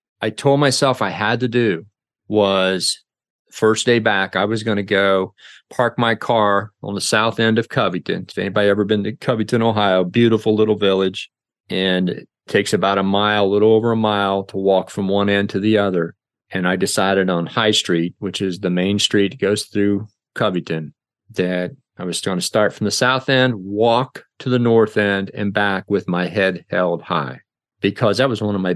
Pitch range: 95-115 Hz